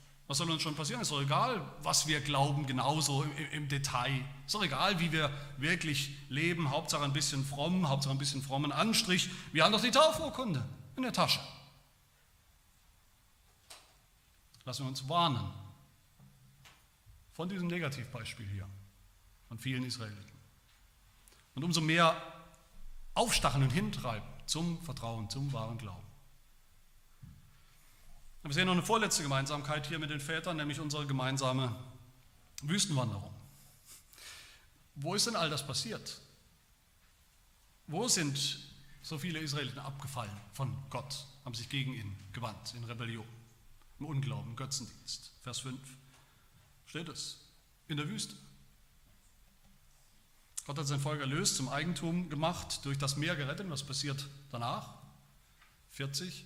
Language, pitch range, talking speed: German, 120-155 Hz, 130 wpm